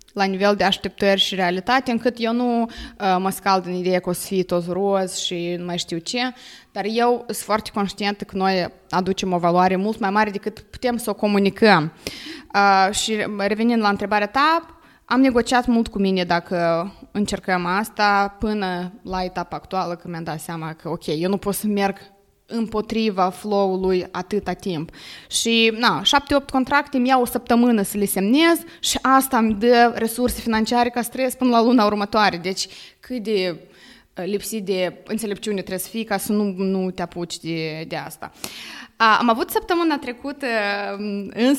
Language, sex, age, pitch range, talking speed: Romanian, female, 20-39, 185-235 Hz, 175 wpm